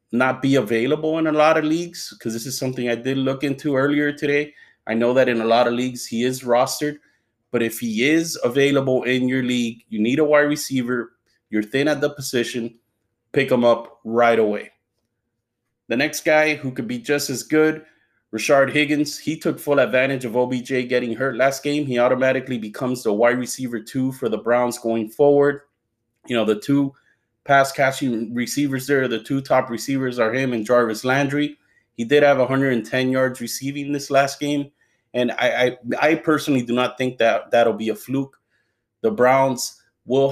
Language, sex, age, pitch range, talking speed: English, male, 30-49, 115-140 Hz, 190 wpm